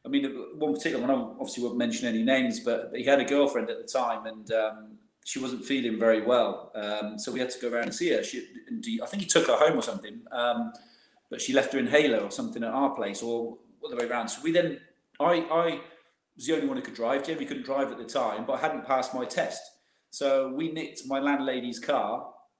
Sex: male